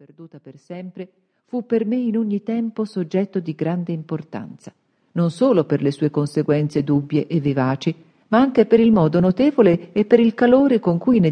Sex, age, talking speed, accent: female, 50-69, 185 wpm, native